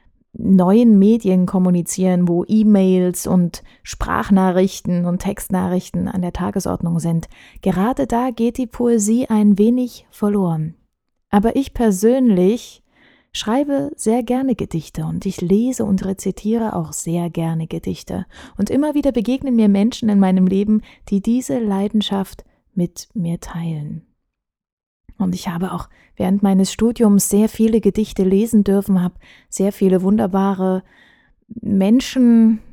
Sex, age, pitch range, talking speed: female, 20-39, 185-220 Hz, 125 wpm